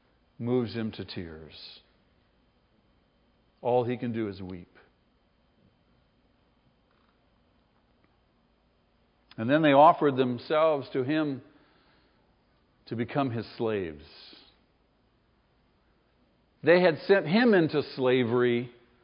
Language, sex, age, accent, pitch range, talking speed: English, male, 50-69, American, 115-170 Hz, 85 wpm